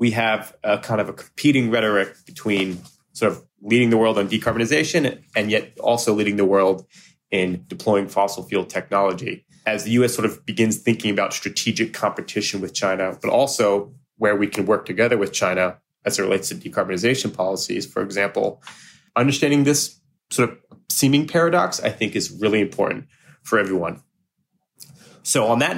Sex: male